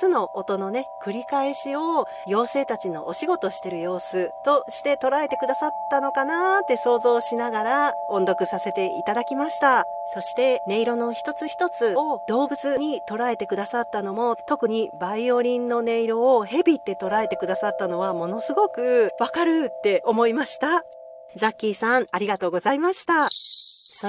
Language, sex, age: Japanese, female, 40-59